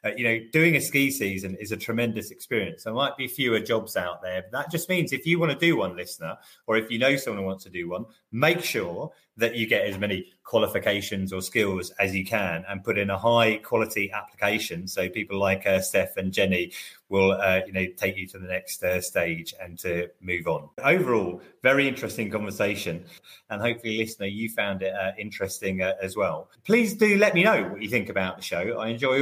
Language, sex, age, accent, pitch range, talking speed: English, male, 30-49, British, 95-120 Hz, 220 wpm